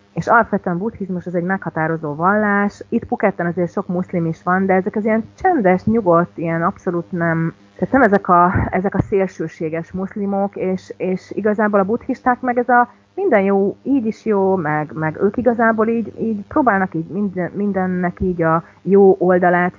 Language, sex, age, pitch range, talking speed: Hungarian, female, 30-49, 160-195 Hz, 175 wpm